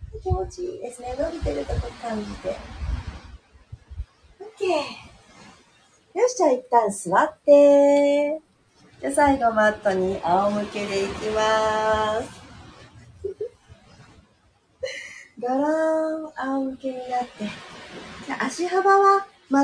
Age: 40-59